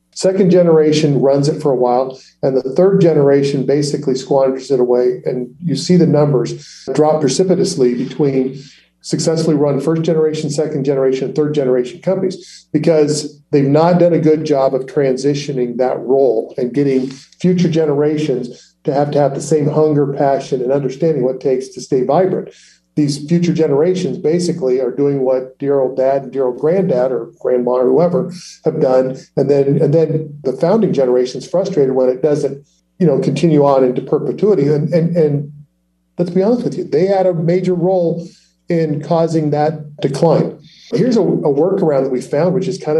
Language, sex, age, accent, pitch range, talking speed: English, male, 40-59, American, 135-165 Hz, 180 wpm